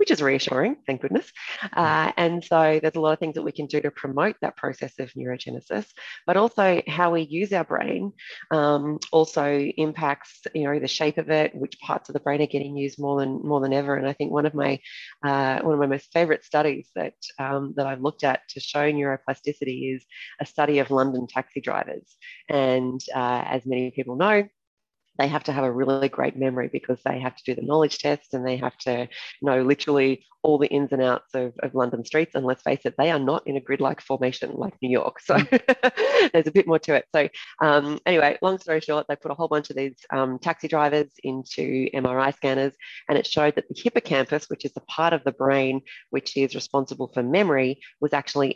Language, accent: English, Australian